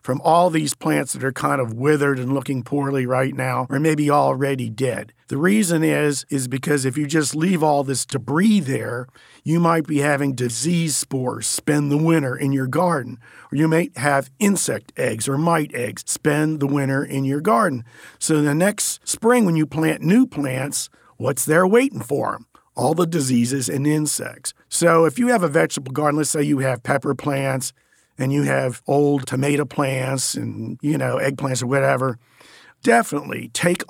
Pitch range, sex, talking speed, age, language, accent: 135-155 Hz, male, 185 wpm, 50-69, English, American